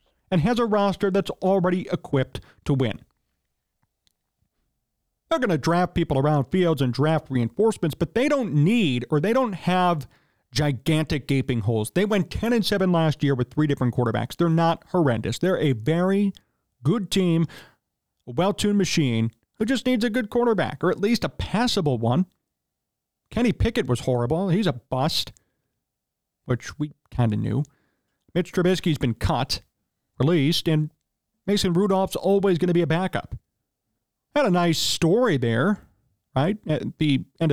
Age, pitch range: 40-59, 130-195 Hz